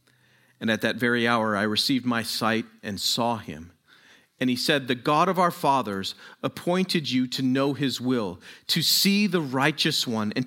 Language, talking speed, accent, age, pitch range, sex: English, 185 wpm, American, 40-59, 115-150 Hz, male